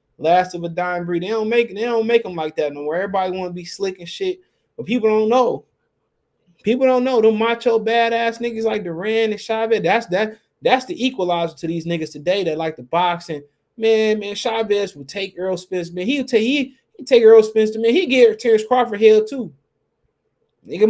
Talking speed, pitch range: 205 wpm, 185-265 Hz